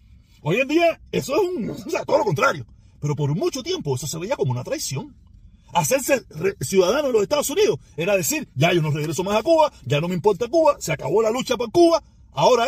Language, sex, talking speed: Spanish, male, 230 wpm